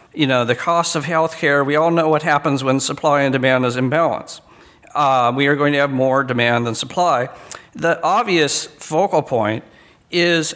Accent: American